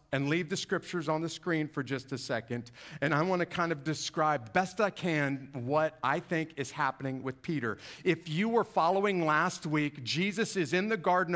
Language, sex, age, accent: English, male, 50-69, American